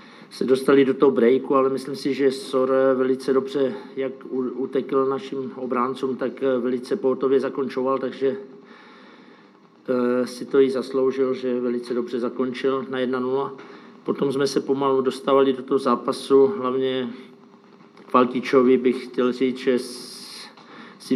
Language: Czech